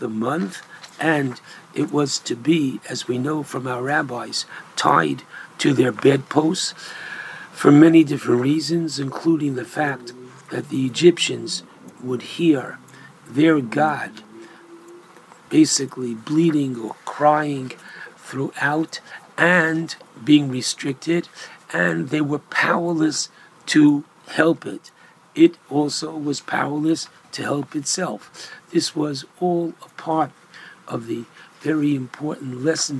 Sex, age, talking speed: male, 60-79, 115 wpm